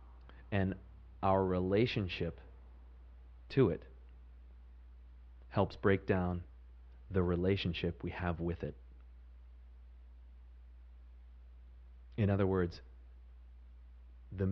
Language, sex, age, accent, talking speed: English, male, 30-49, American, 75 wpm